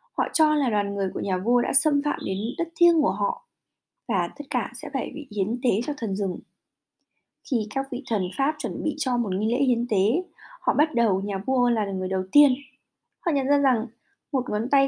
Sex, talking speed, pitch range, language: female, 225 wpm, 215-280 Hz, Vietnamese